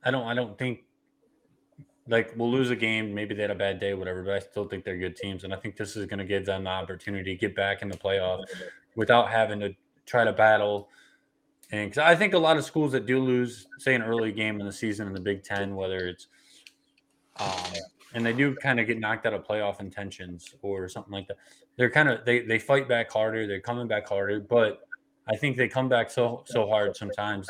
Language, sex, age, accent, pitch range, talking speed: English, male, 20-39, American, 100-120 Hz, 240 wpm